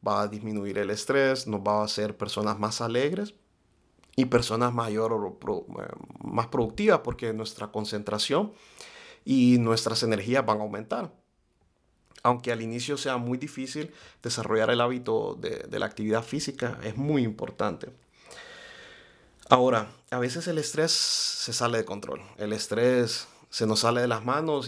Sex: male